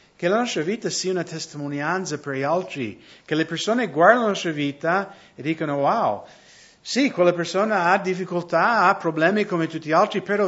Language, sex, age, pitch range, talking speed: English, male, 50-69, 150-195 Hz, 185 wpm